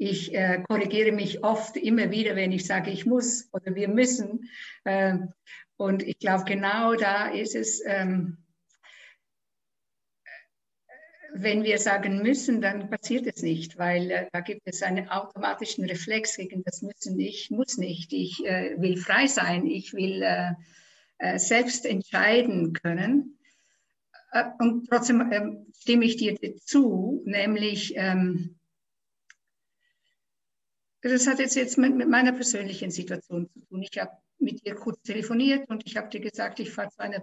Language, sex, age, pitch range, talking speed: German, female, 60-79, 190-245 Hz, 130 wpm